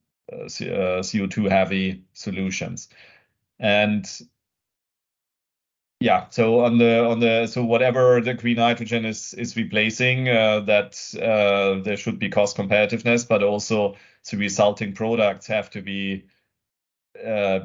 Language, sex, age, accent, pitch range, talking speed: English, male, 30-49, German, 100-115 Hz, 120 wpm